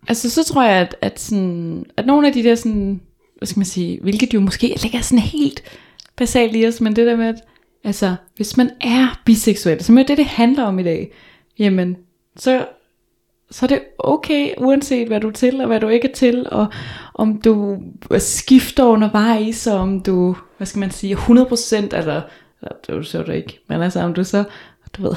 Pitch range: 185-240 Hz